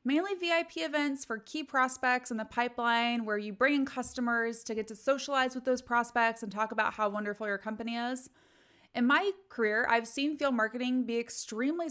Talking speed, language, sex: 190 wpm, English, female